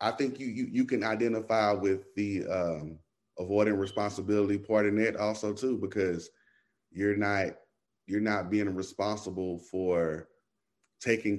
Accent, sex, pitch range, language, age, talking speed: American, male, 90-105 Hz, English, 30-49, 135 wpm